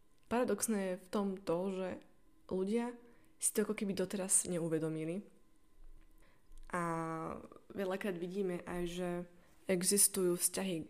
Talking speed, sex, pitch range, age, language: 110 wpm, female, 175-200 Hz, 20-39, Slovak